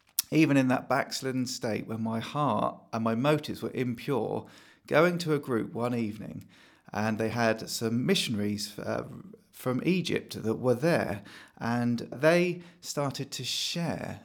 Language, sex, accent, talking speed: English, male, British, 145 wpm